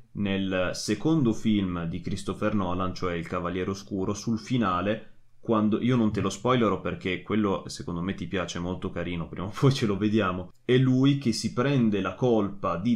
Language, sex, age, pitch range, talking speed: Italian, male, 20-39, 95-115 Hz, 185 wpm